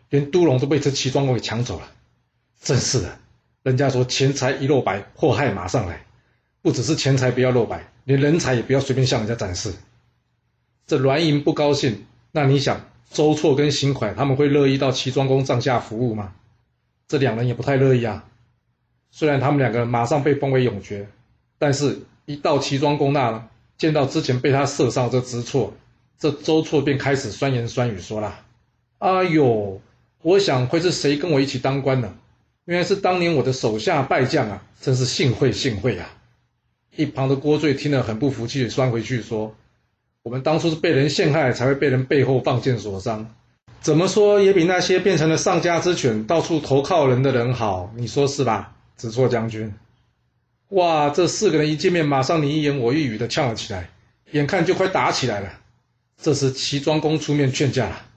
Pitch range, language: 120-145 Hz, Chinese